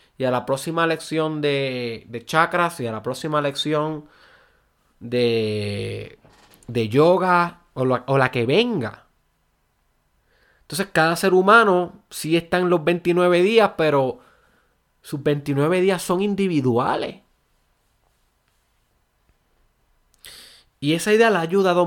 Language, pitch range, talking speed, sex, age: Spanish, 125-175 Hz, 120 wpm, male, 20-39